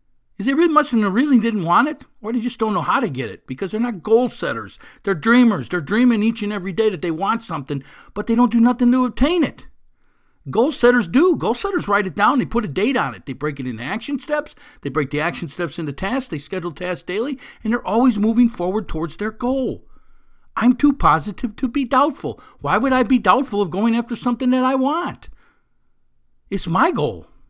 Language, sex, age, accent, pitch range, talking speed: English, male, 50-69, American, 155-250 Hz, 220 wpm